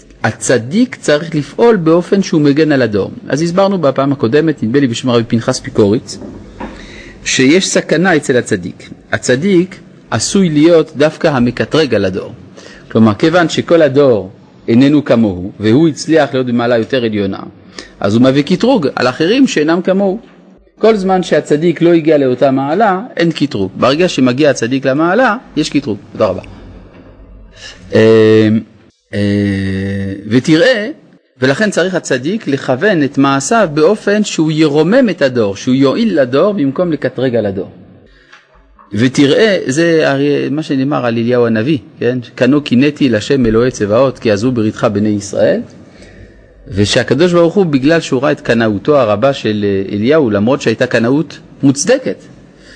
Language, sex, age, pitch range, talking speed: Hebrew, male, 40-59, 115-165 Hz, 135 wpm